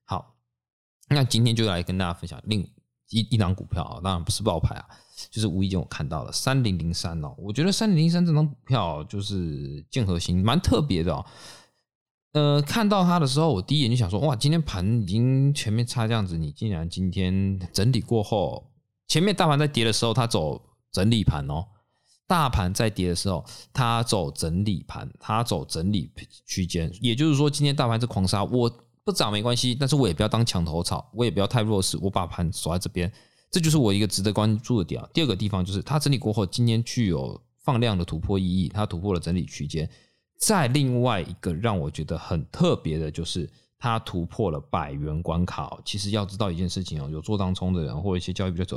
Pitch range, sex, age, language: 90-125 Hz, male, 20-39, Chinese